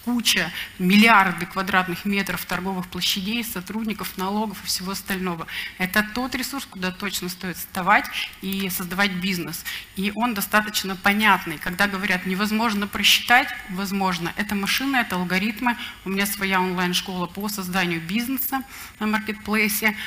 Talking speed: 130 wpm